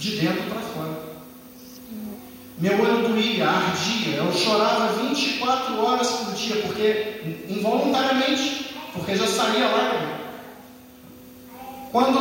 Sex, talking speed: male, 105 wpm